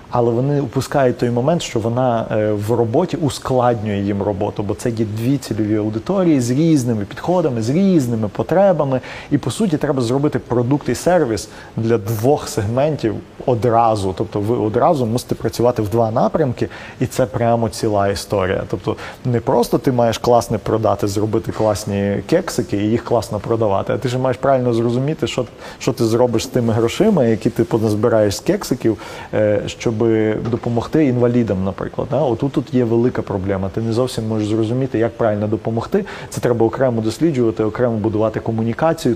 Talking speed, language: 160 wpm, Ukrainian